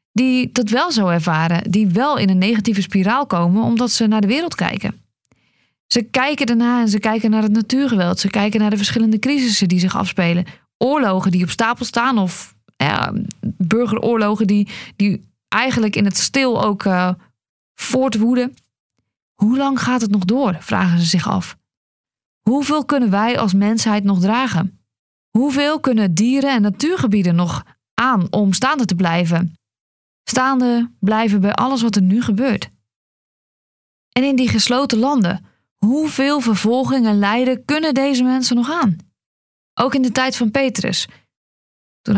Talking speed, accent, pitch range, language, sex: 155 wpm, Dutch, 195-250 Hz, Dutch, female